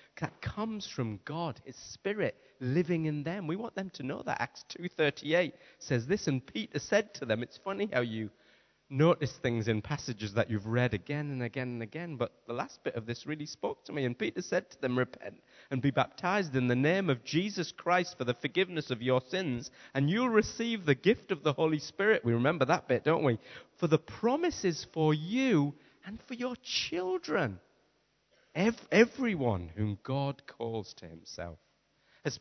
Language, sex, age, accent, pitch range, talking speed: English, male, 30-49, British, 120-180 Hz, 190 wpm